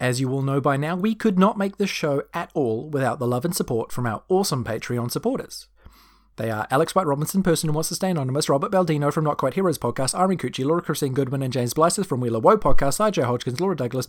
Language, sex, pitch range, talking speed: English, male, 130-200 Hz, 245 wpm